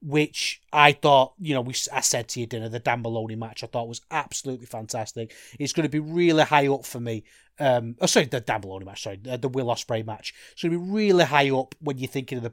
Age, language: 30-49, English